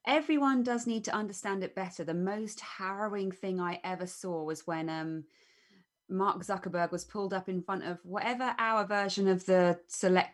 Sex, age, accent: female, 20-39, British